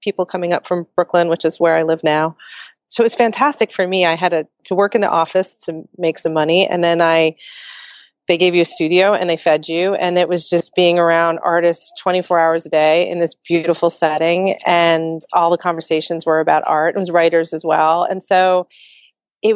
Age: 30-49